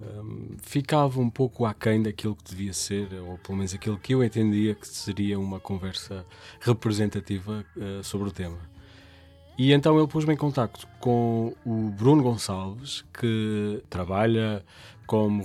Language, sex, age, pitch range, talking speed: Portuguese, male, 20-39, 95-115 Hz, 150 wpm